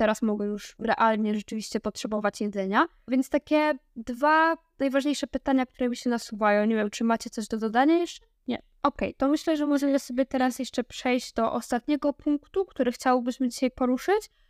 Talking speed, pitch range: 170 wpm, 235-265 Hz